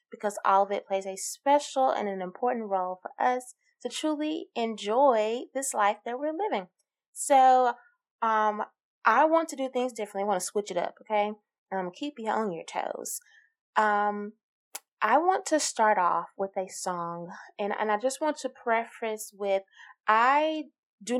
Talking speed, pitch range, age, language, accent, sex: 185 wpm, 195-280 Hz, 20-39, English, American, female